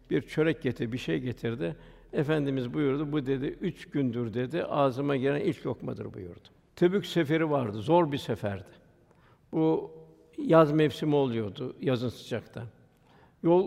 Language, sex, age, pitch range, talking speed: Turkish, male, 60-79, 130-165 Hz, 135 wpm